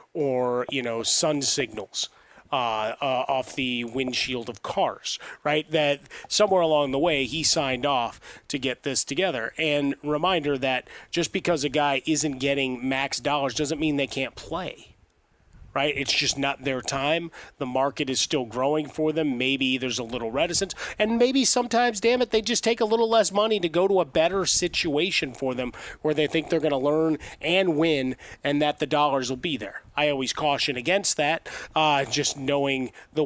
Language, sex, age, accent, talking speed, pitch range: English, male, 30-49, American, 190 wpm, 135-160 Hz